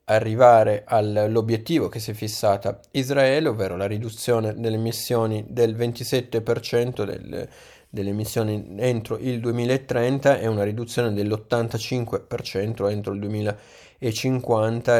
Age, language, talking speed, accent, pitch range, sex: 20-39, Italian, 105 wpm, native, 100-115 Hz, male